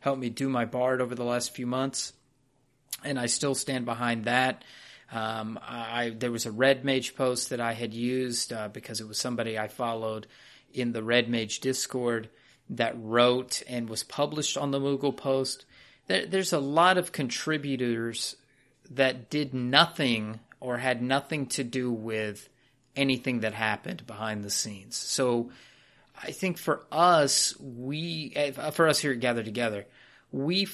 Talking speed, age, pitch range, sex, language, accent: 160 wpm, 30-49, 115-135 Hz, male, English, American